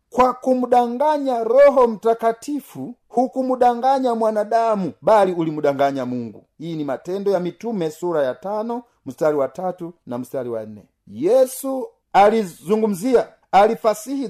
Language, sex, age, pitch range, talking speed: Swahili, male, 50-69, 170-230 Hz, 115 wpm